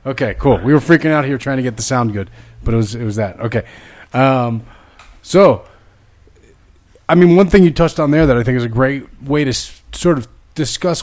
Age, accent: 30-49, American